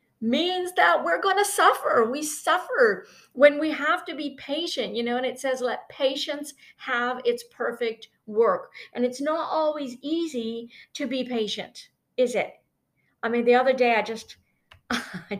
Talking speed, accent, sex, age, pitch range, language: 170 wpm, American, female, 50-69, 225-285 Hz, English